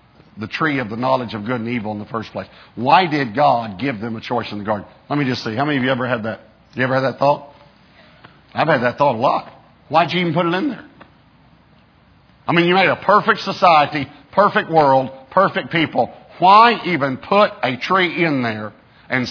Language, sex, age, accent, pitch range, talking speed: English, male, 50-69, American, 125-175 Hz, 225 wpm